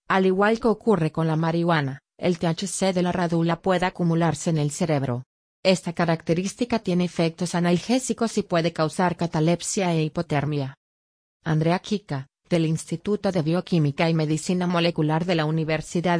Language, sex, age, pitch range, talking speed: English, female, 30-49, 155-190 Hz, 150 wpm